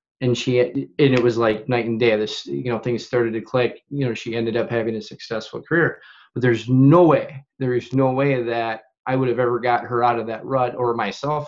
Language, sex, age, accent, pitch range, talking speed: English, male, 20-39, American, 115-130 Hz, 245 wpm